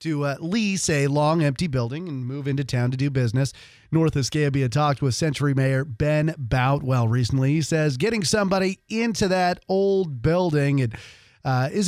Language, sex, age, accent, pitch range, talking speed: English, male, 40-59, American, 125-155 Hz, 165 wpm